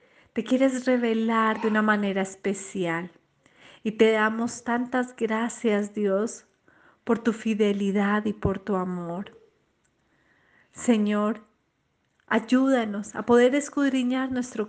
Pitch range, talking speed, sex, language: 205-250 Hz, 105 wpm, female, Spanish